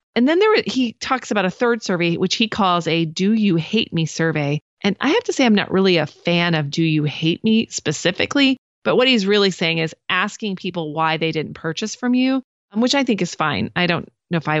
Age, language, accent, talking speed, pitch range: 30-49, English, American, 240 wpm, 165-195 Hz